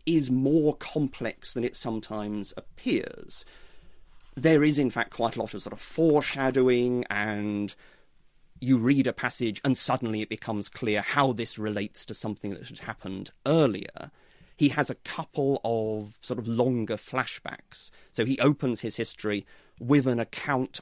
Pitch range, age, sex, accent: 110-150 Hz, 30-49, male, British